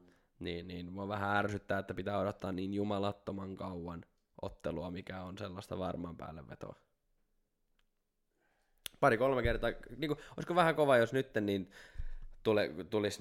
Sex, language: male, Finnish